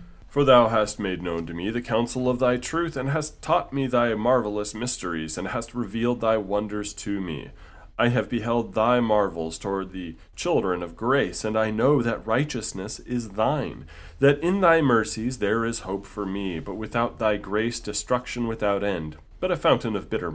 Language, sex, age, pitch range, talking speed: English, male, 30-49, 100-120 Hz, 190 wpm